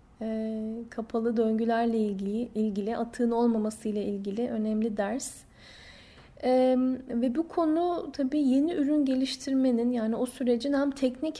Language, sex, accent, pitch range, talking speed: Turkish, female, native, 220-265 Hz, 115 wpm